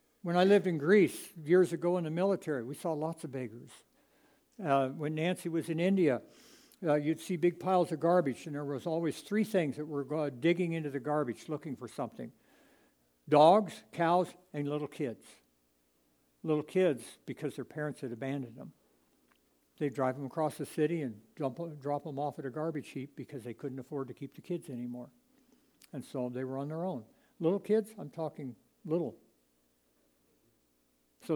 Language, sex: English, male